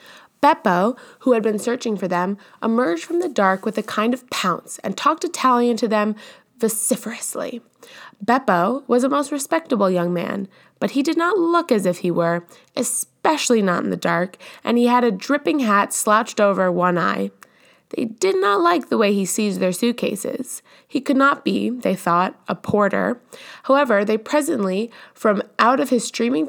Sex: female